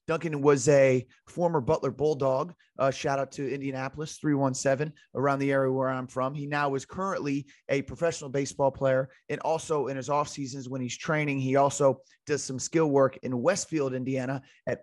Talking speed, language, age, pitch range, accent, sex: 180 wpm, English, 30-49, 130-150 Hz, American, male